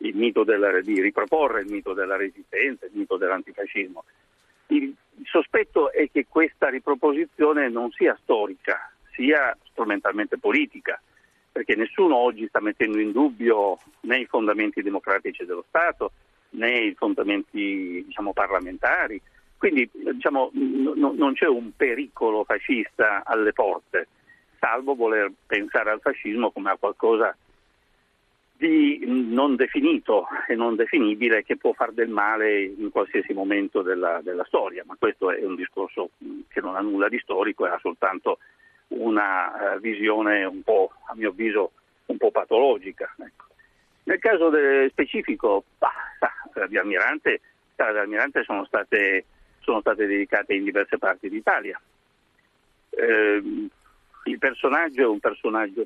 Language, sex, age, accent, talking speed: Italian, male, 50-69, native, 130 wpm